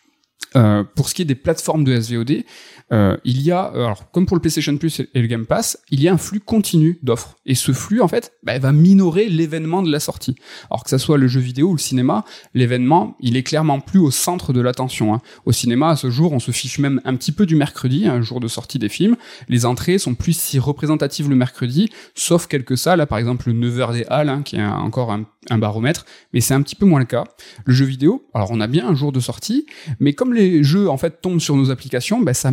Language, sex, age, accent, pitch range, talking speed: French, male, 20-39, French, 125-165 Hz, 255 wpm